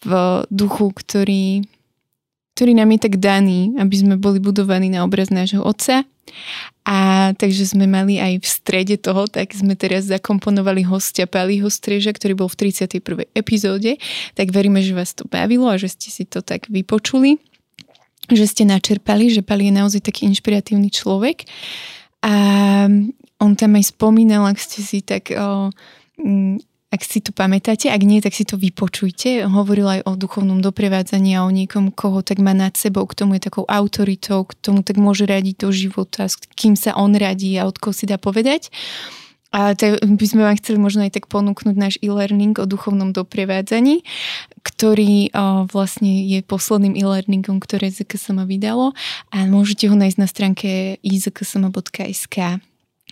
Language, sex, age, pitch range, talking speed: Slovak, female, 20-39, 195-210 Hz, 165 wpm